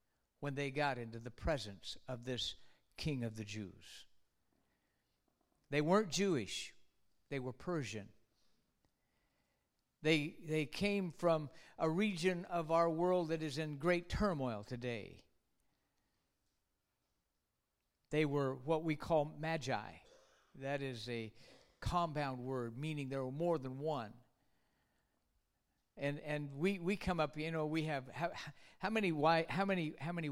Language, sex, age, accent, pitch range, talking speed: English, male, 50-69, American, 130-170 Hz, 135 wpm